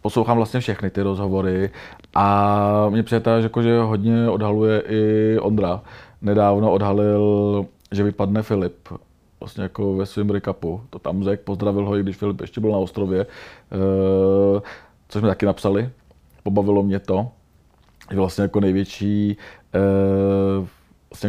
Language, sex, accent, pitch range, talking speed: Czech, male, native, 100-115 Hz, 145 wpm